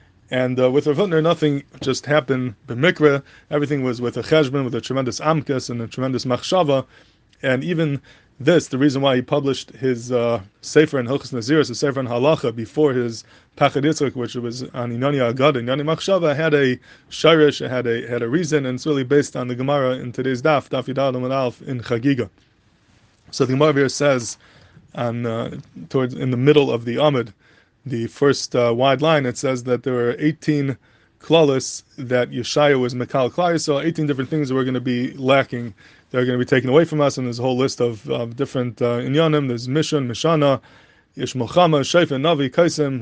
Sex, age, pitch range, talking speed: male, 20-39, 125-150 Hz, 190 wpm